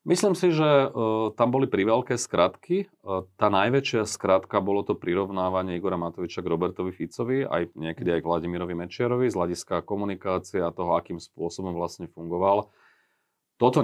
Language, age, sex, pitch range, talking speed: Slovak, 30-49, male, 90-110 Hz, 155 wpm